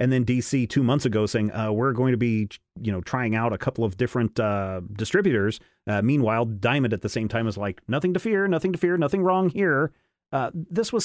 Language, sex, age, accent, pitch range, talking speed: English, male, 40-59, American, 115-155 Hz, 235 wpm